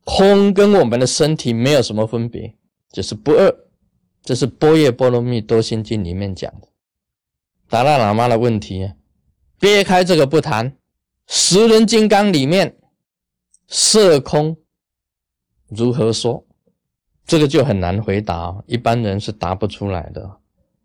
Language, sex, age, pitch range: Chinese, male, 20-39, 105-150 Hz